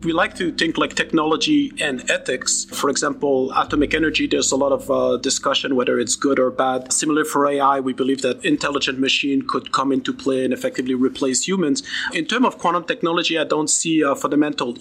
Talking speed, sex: 200 wpm, male